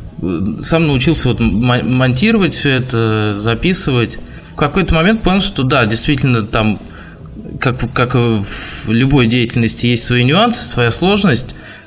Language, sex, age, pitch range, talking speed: Russian, male, 20-39, 110-145 Hz, 120 wpm